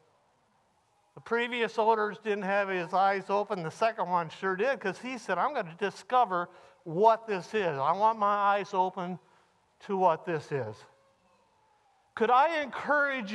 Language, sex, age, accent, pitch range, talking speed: English, male, 60-79, American, 210-325 Hz, 155 wpm